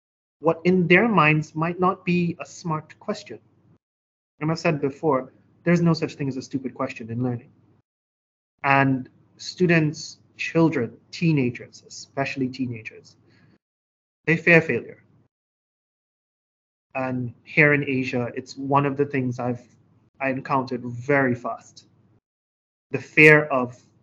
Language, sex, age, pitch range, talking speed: English, male, 30-49, 125-150 Hz, 125 wpm